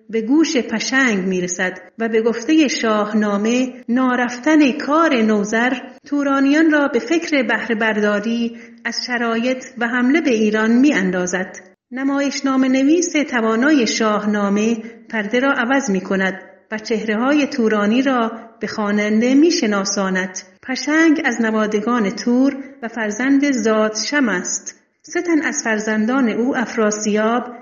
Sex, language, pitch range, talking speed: female, Persian, 215-265 Hz, 125 wpm